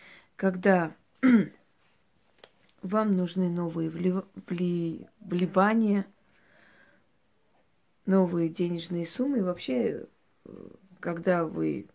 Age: 20-39